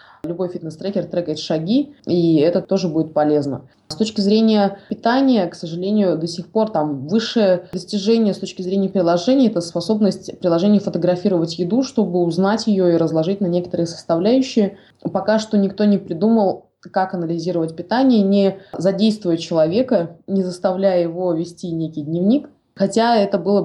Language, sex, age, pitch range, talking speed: Russian, female, 20-39, 170-205 Hz, 145 wpm